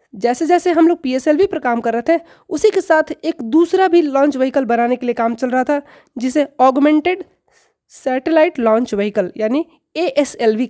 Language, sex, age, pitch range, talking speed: Hindi, female, 20-39, 250-315 Hz, 180 wpm